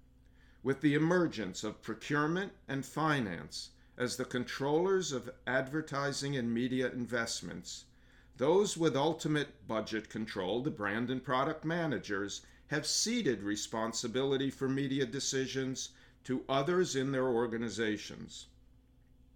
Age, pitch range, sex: 50-69, 120-155 Hz, male